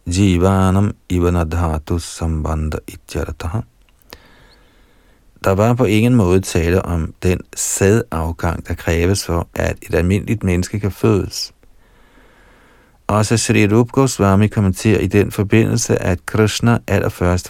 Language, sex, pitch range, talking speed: Danish, male, 90-110 Hz, 105 wpm